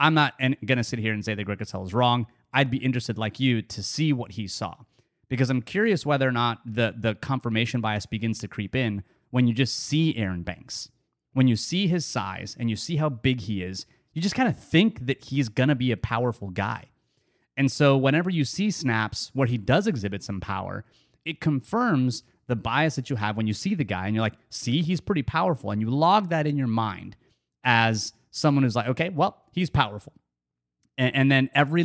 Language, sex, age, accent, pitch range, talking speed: English, male, 30-49, American, 110-145 Hz, 220 wpm